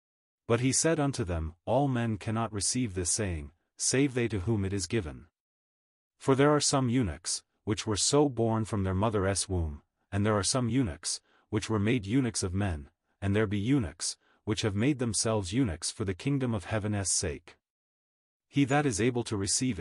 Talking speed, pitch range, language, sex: 190 wpm, 95-120 Hz, English, male